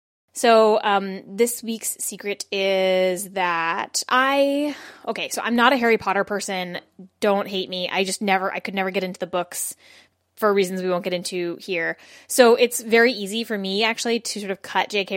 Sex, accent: female, American